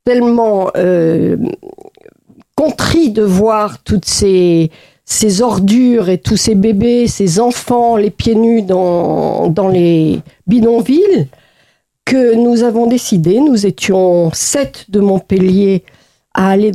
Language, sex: French, female